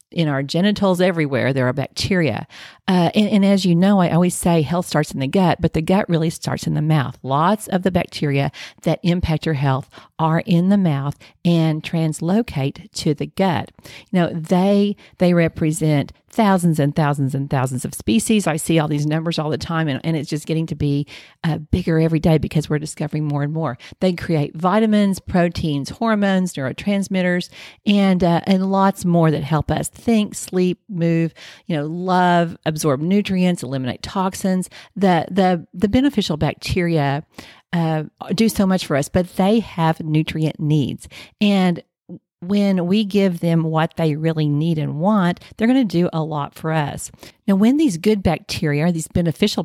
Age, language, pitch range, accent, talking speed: 40-59, English, 150-190 Hz, American, 180 wpm